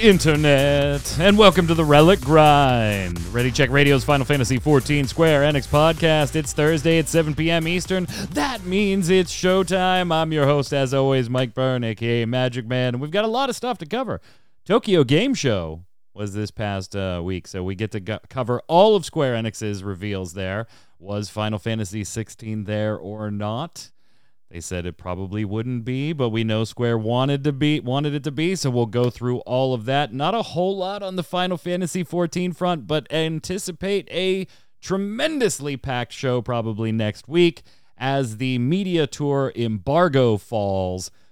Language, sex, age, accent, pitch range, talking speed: English, male, 30-49, American, 105-160 Hz, 175 wpm